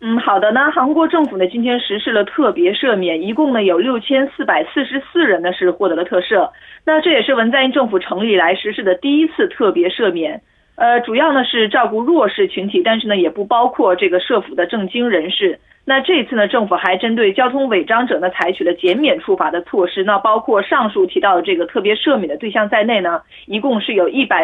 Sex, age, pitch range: female, 30-49, 190-280 Hz